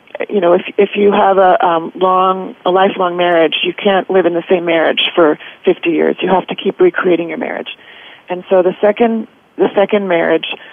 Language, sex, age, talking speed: English, female, 40-59, 200 wpm